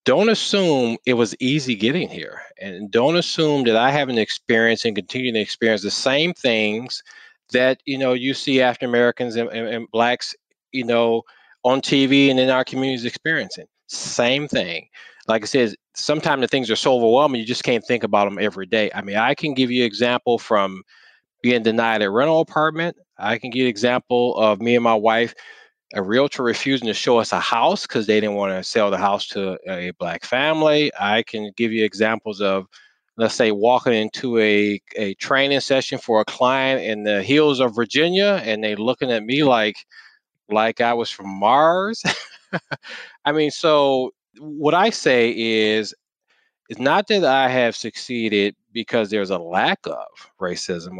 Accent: American